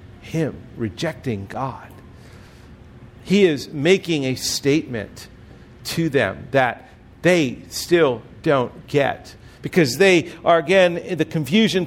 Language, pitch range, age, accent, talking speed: English, 125-185 Hz, 50-69, American, 105 wpm